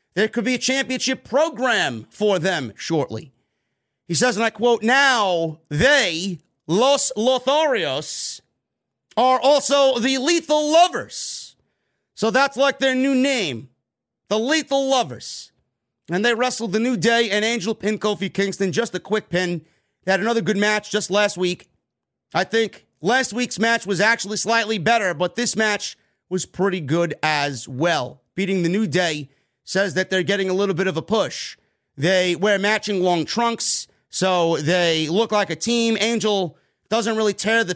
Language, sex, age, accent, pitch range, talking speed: English, male, 40-59, American, 165-230 Hz, 160 wpm